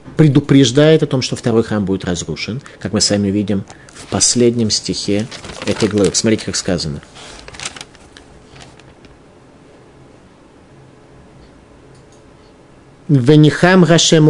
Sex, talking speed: male, 90 wpm